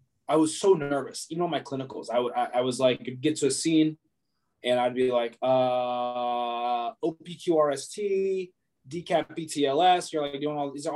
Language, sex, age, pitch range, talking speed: English, male, 20-39, 125-165 Hz, 180 wpm